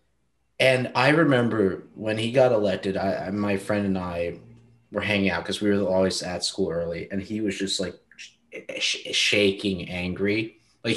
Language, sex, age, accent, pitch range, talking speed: English, male, 30-49, American, 95-125 Hz, 175 wpm